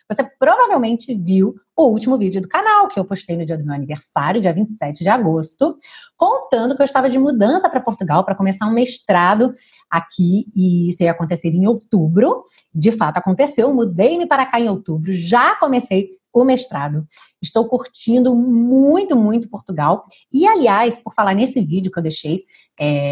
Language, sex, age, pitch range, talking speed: Portuguese, female, 30-49, 180-250 Hz, 170 wpm